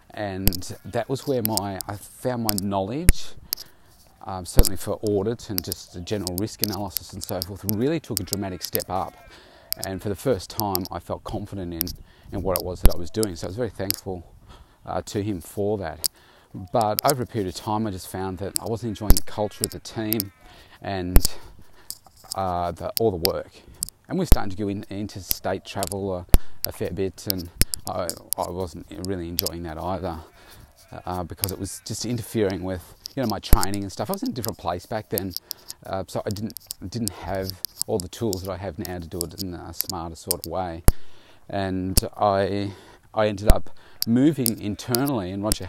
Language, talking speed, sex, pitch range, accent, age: English, 200 wpm, male, 90-110 Hz, Australian, 30-49